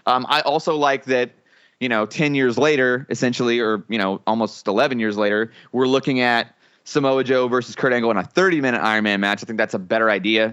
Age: 20-39